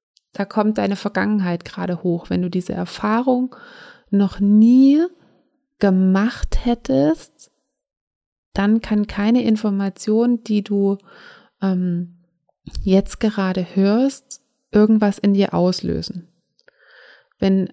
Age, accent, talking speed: 20-39, German, 100 wpm